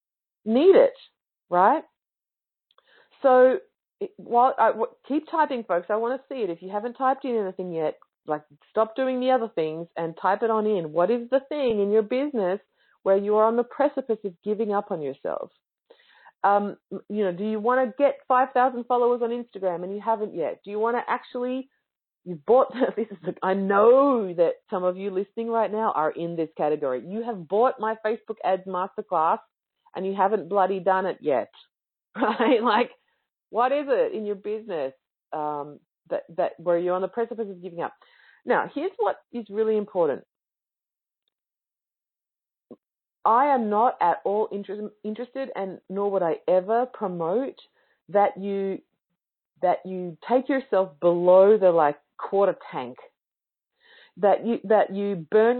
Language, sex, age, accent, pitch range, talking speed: English, female, 40-59, Australian, 185-245 Hz, 170 wpm